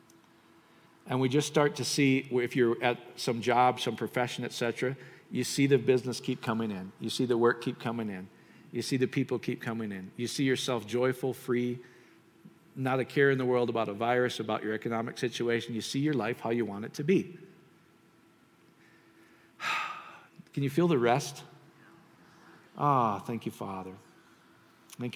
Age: 50-69